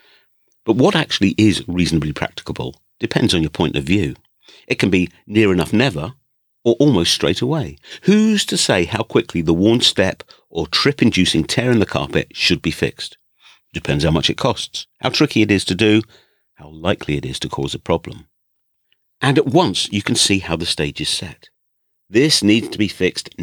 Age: 50-69